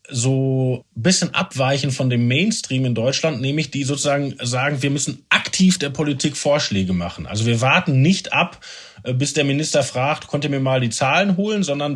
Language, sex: German, male